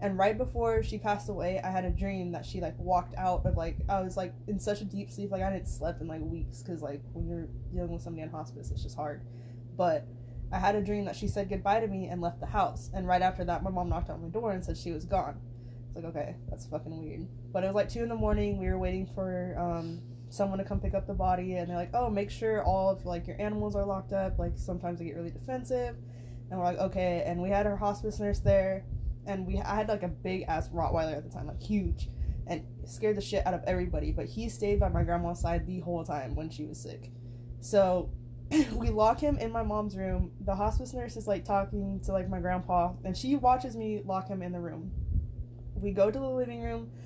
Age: 20-39